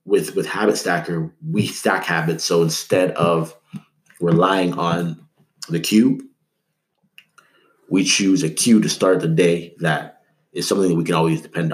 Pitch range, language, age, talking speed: 85-100 Hz, English, 30-49, 155 wpm